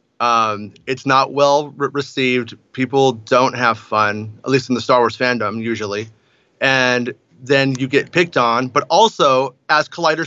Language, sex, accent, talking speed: English, male, American, 160 wpm